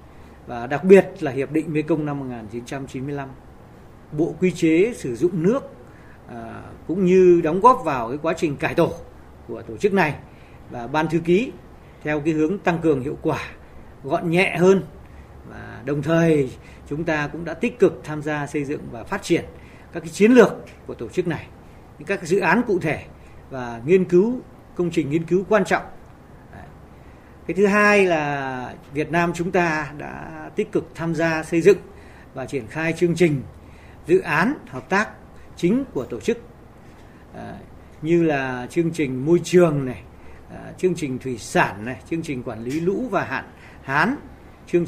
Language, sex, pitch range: Vietnamese, male, 125-180 Hz